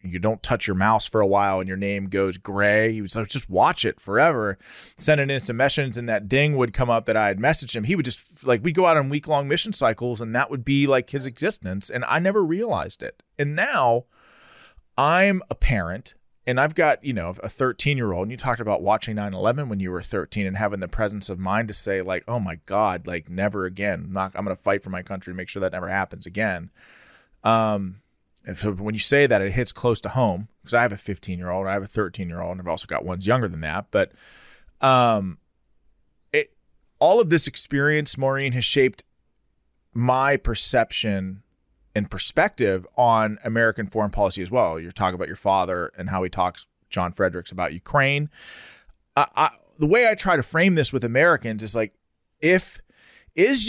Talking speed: 215 wpm